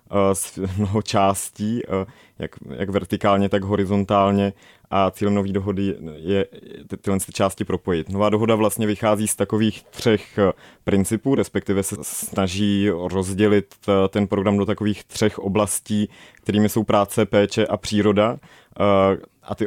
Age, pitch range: 30-49, 95-105 Hz